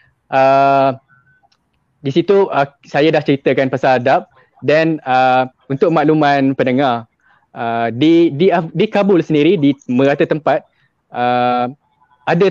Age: 20-39